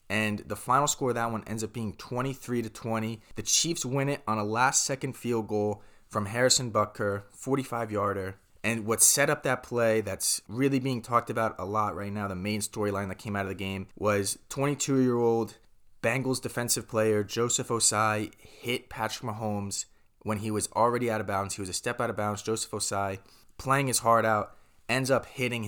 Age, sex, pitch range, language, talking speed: 20-39, male, 105-120 Hz, English, 190 wpm